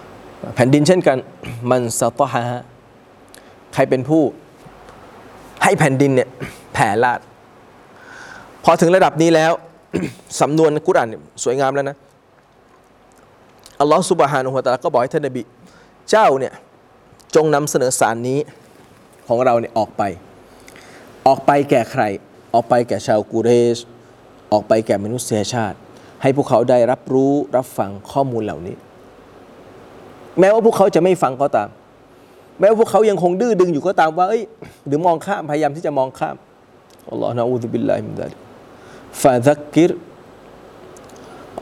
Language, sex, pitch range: Thai, male, 125-175 Hz